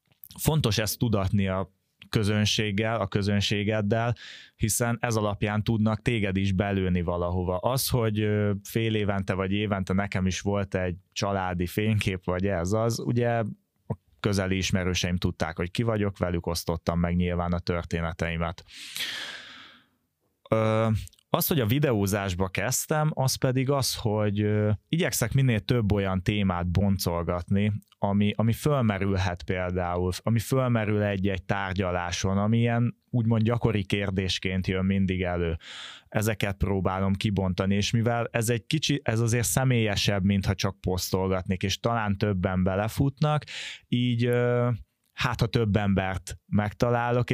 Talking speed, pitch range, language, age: 125 wpm, 95-115 Hz, Hungarian, 20-39